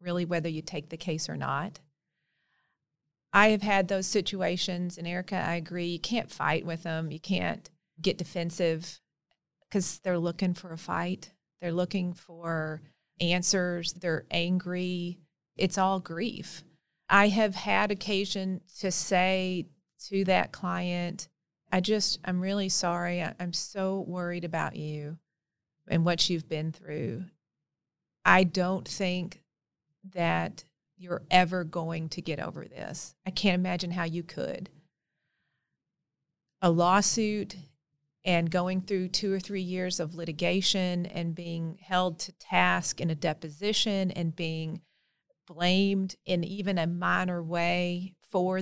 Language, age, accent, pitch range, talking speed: English, 40-59, American, 165-185 Hz, 135 wpm